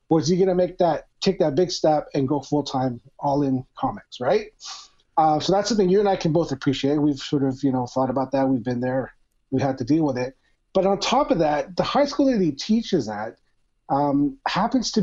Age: 30-49